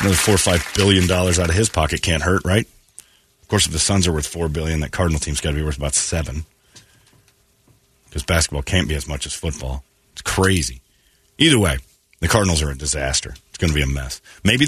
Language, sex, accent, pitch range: English, male, American, 85-110 Hz